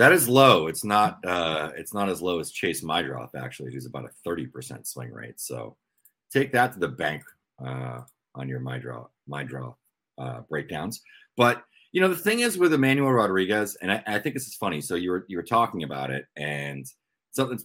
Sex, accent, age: male, American, 30-49